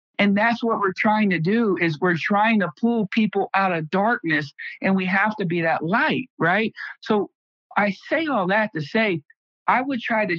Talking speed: 200 wpm